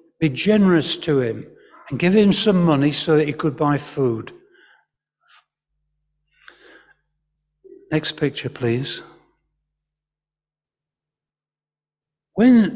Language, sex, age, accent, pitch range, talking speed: English, male, 60-79, British, 145-195 Hz, 90 wpm